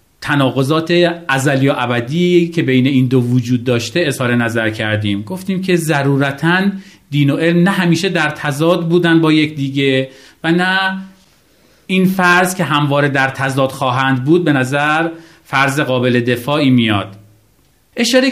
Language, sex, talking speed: Persian, male, 145 wpm